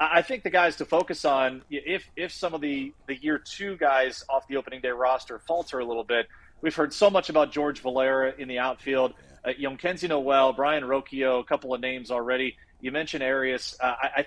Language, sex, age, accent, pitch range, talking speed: English, male, 30-49, American, 135-175 Hz, 215 wpm